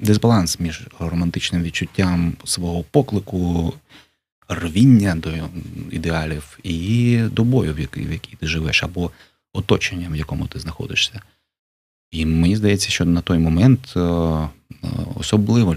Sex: male